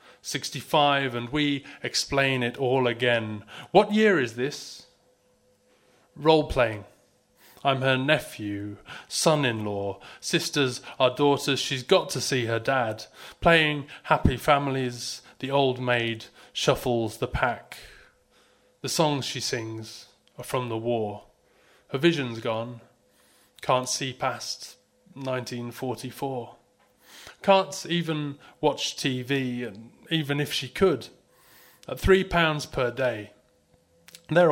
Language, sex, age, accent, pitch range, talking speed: English, male, 30-49, British, 115-140 Hz, 110 wpm